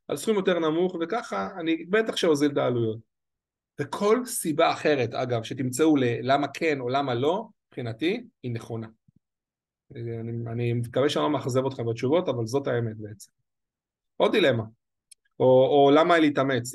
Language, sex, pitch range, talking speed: Hebrew, male, 125-185 Hz, 145 wpm